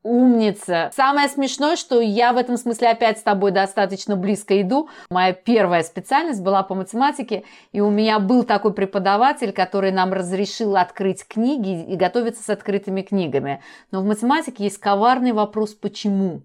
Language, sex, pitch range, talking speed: Russian, female, 200-280 Hz, 155 wpm